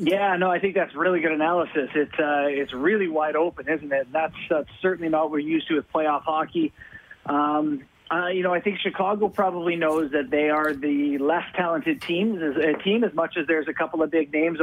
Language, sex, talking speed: English, male, 220 wpm